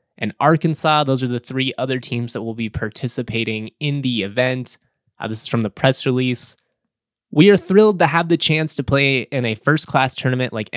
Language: English